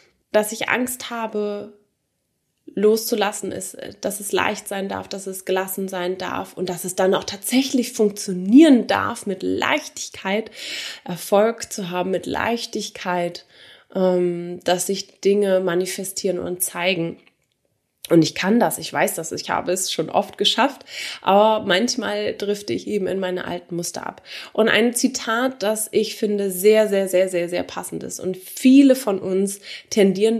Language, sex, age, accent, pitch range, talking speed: English, female, 20-39, German, 185-225 Hz, 155 wpm